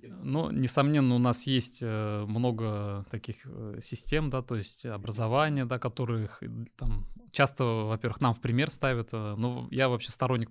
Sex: male